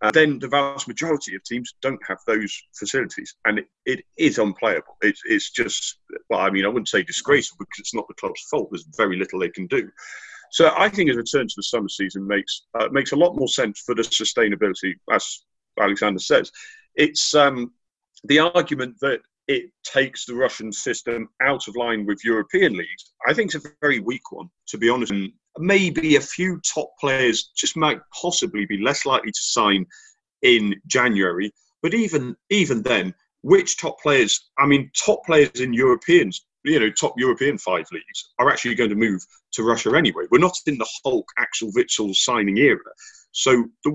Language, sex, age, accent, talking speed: English, male, 40-59, British, 190 wpm